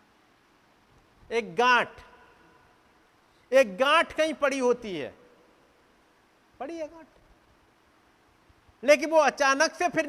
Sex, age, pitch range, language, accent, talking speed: male, 50-69, 180-270 Hz, Hindi, native, 90 wpm